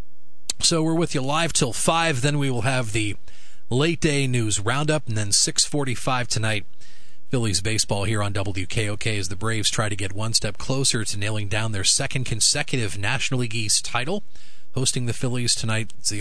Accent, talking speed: American, 185 wpm